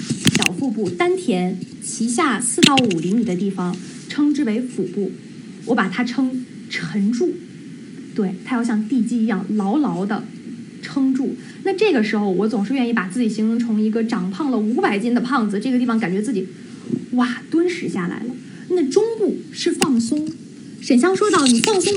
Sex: female